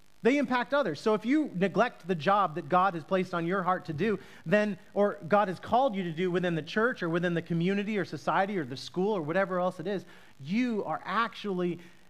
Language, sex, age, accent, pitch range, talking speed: English, male, 30-49, American, 150-205 Hz, 230 wpm